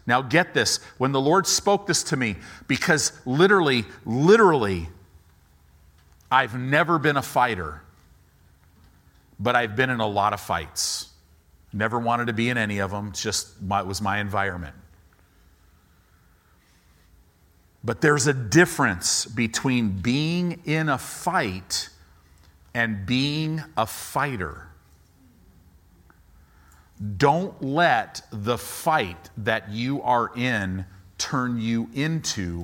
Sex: male